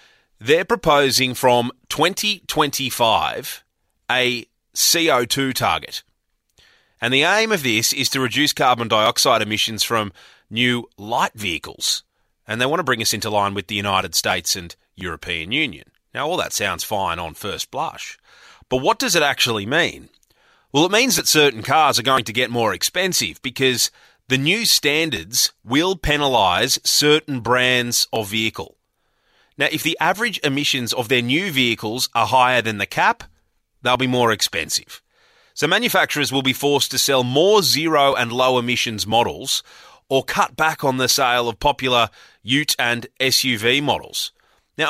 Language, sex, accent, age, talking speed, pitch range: English, male, Australian, 30-49, 155 wpm, 115-145 Hz